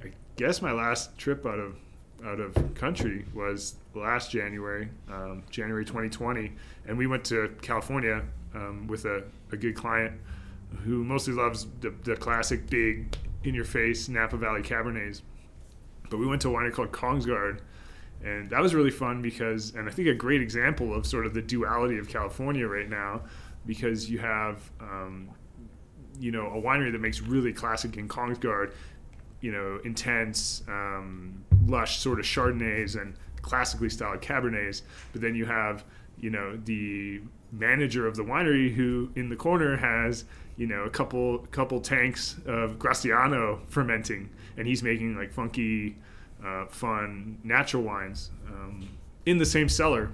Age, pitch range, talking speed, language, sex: 20-39, 100-120 Hz, 155 wpm, English, male